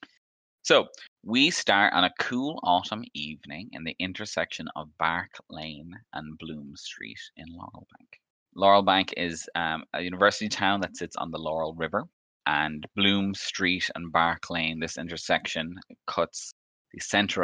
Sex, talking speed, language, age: male, 150 wpm, English, 20-39